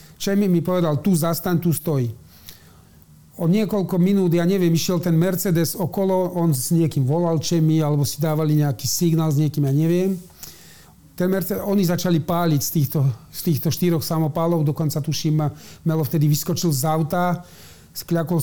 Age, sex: 40-59, male